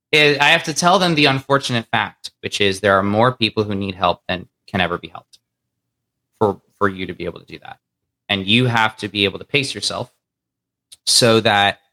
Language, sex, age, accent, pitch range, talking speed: English, male, 20-39, American, 100-130 Hz, 210 wpm